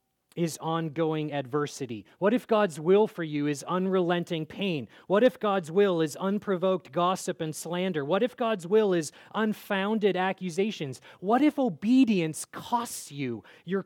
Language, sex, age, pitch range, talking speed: English, male, 30-49, 135-195 Hz, 145 wpm